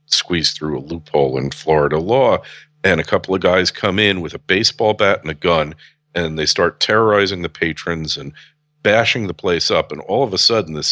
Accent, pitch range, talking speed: American, 85-115 Hz, 210 wpm